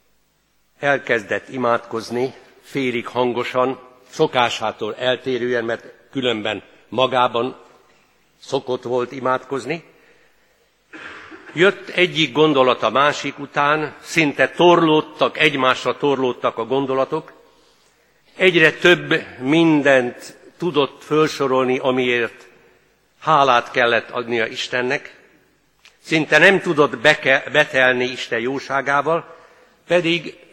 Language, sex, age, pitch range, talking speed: Hungarian, male, 60-79, 125-155 Hz, 80 wpm